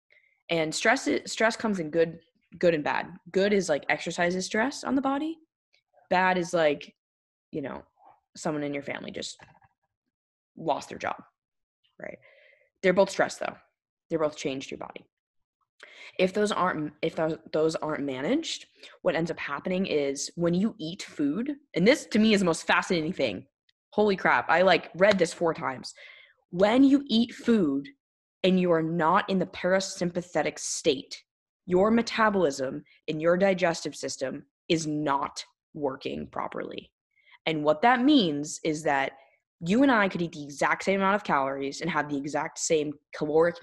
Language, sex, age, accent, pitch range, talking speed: English, female, 20-39, American, 155-205 Hz, 165 wpm